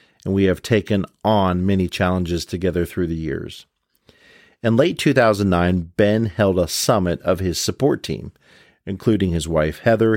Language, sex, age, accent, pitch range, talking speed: English, male, 50-69, American, 90-105 Hz, 165 wpm